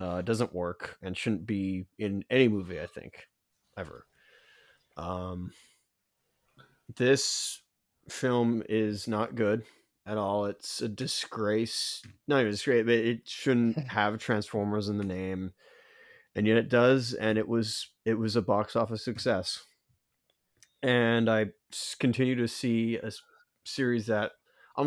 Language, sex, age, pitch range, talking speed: English, male, 30-49, 100-120 Hz, 140 wpm